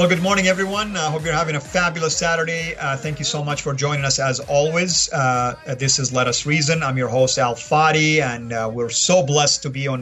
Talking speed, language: 240 wpm, English